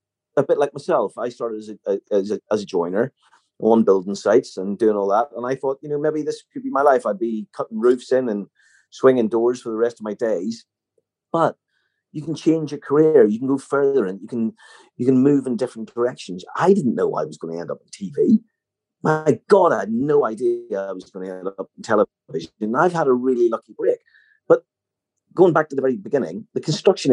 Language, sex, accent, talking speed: English, male, British, 230 wpm